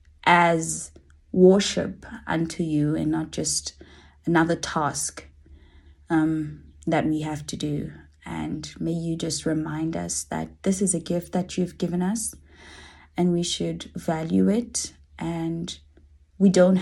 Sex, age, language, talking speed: female, 20-39, English, 135 wpm